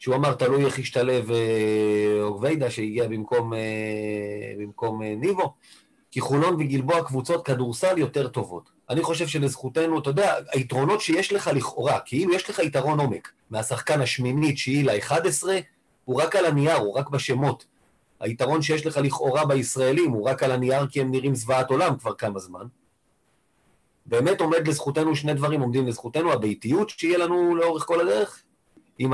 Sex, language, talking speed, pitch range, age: male, Hebrew, 160 wpm, 125-155 Hz, 30-49